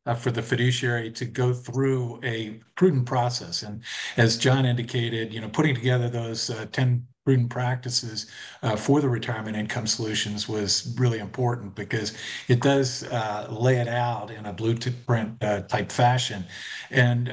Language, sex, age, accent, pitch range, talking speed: English, male, 50-69, American, 115-130 Hz, 160 wpm